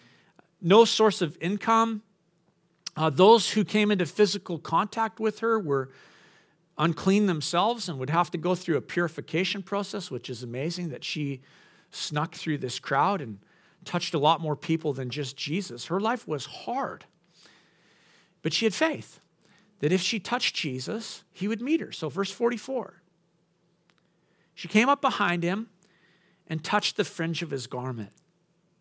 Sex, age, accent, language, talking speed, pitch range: male, 50-69, American, English, 155 wpm, 165-235 Hz